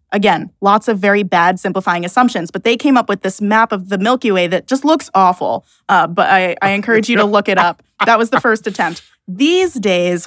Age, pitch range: 20-39, 190-215 Hz